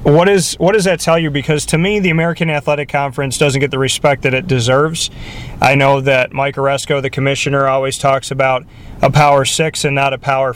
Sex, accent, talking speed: male, American, 215 wpm